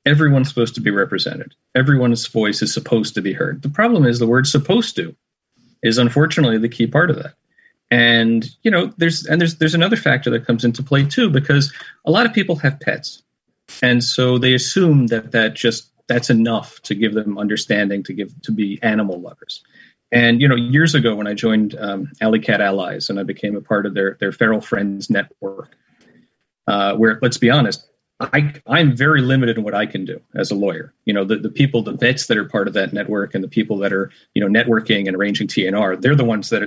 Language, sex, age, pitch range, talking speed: English, male, 40-59, 110-150 Hz, 220 wpm